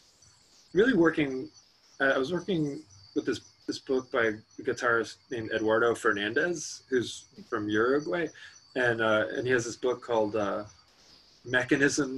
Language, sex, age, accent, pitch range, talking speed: English, male, 20-39, American, 110-135 Hz, 145 wpm